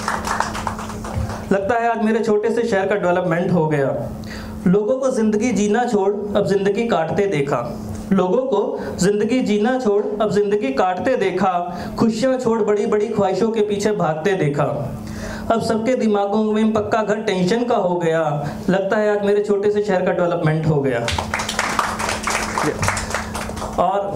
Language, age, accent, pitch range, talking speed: Hindi, 20-39, native, 180-210 Hz, 150 wpm